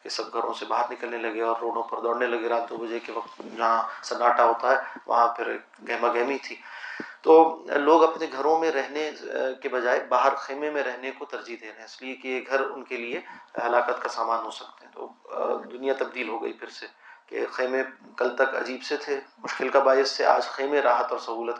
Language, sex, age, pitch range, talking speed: Urdu, male, 30-49, 120-135 Hz, 220 wpm